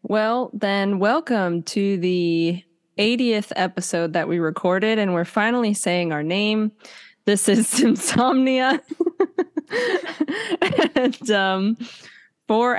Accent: American